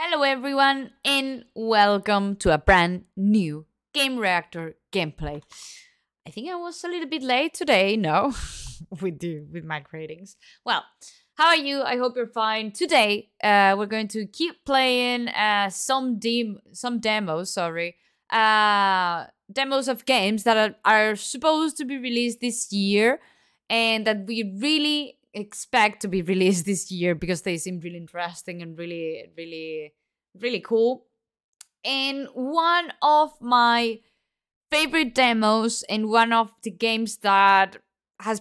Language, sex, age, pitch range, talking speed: Italian, female, 20-39, 190-250 Hz, 145 wpm